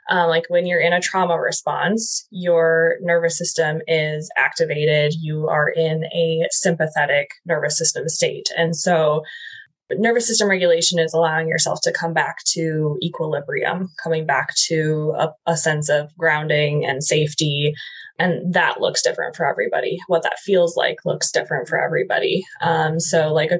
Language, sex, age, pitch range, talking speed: English, female, 20-39, 160-195 Hz, 160 wpm